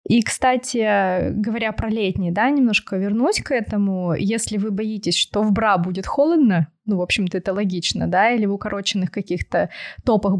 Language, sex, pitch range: Russian, female, 190-225 Hz